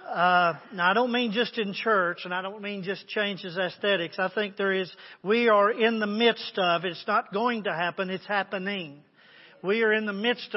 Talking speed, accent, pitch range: 210 wpm, American, 185-235 Hz